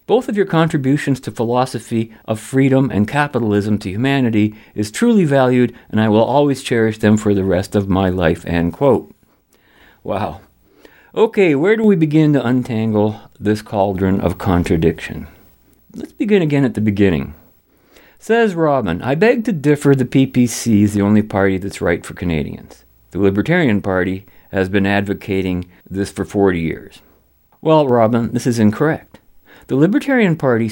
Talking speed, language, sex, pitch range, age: 155 wpm, English, male, 105-155 Hz, 50-69